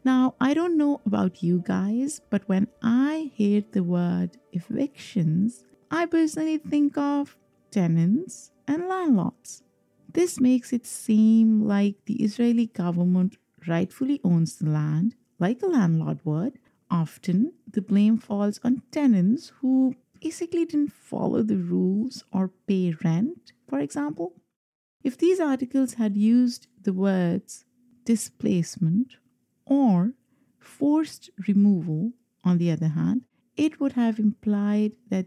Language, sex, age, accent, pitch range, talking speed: English, female, 50-69, Indian, 185-250 Hz, 125 wpm